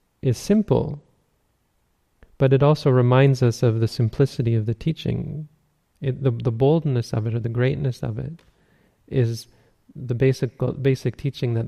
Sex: male